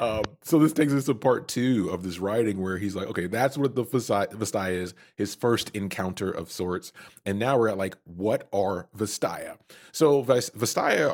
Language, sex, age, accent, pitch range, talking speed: English, male, 30-49, American, 95-125 Hz, 190 wpm